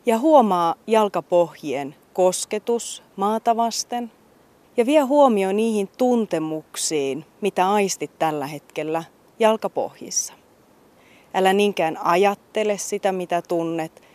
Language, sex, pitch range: Finnish, female, 170-215 Hz